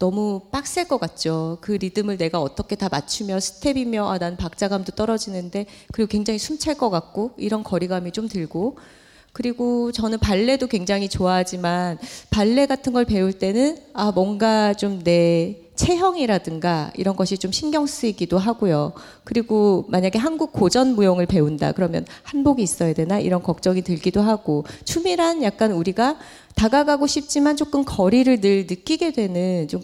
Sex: female